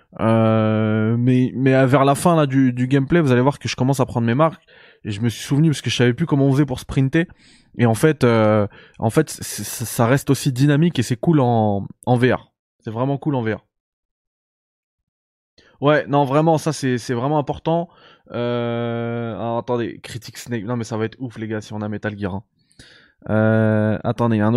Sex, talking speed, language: male, 215 wpm, French